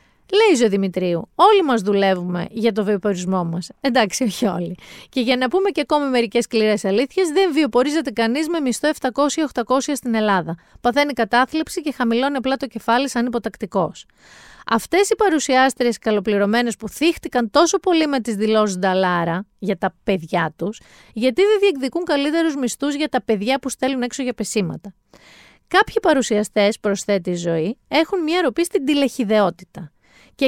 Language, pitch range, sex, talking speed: Greek, 210-280 Hz, female, 150 wpm